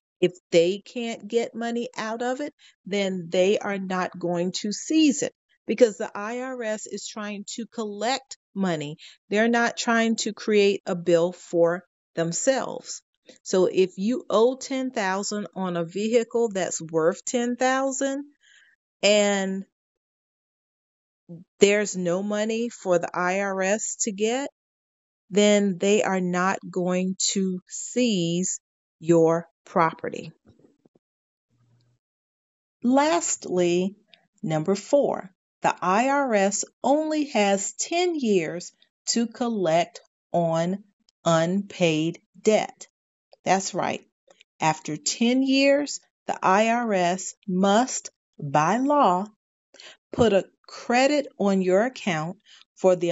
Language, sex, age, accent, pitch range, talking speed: English, female, 40-59, American, 180-235 Hz, 105 wpm